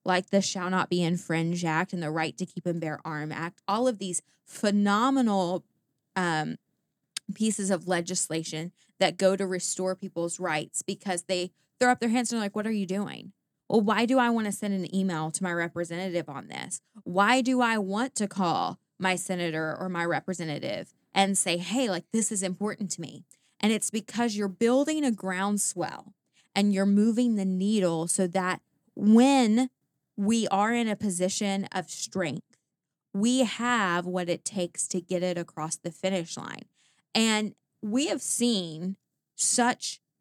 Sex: female